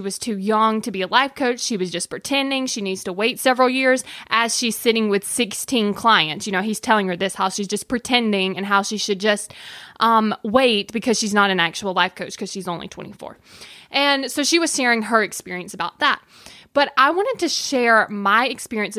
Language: English